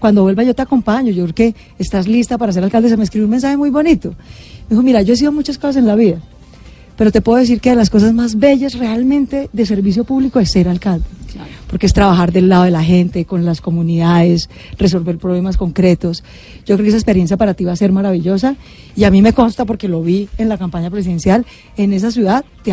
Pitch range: 185-240 Hz